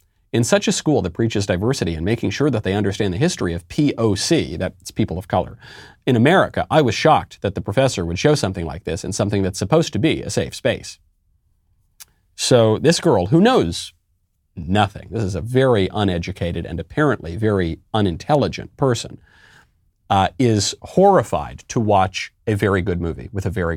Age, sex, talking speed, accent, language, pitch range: 40-59, male, 180 wpm, American, English, 90-140 Hz